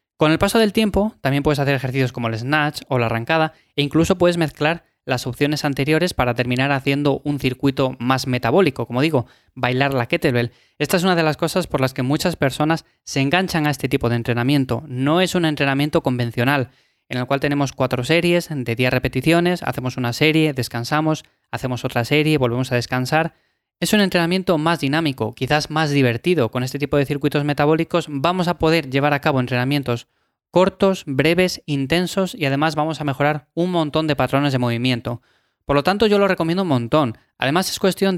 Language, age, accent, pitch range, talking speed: Spanish, 20-39, Spanish, 130-165 Hz, 190 wpm